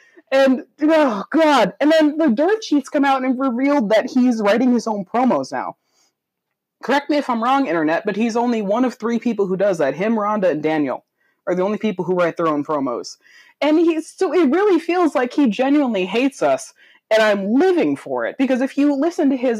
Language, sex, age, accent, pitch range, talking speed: English, female, 20-39, American, 190-295 Hz, 215 wpm